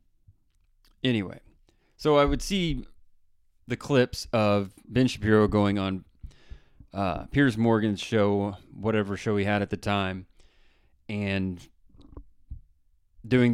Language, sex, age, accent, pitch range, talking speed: English, male, 30-49, American, 95-120 Hz, 110 wpm